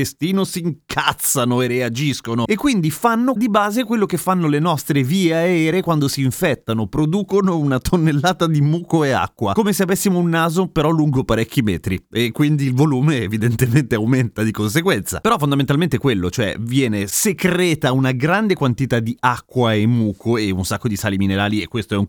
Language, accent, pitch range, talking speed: Italian, native, 115-175 Hz, 185 wpm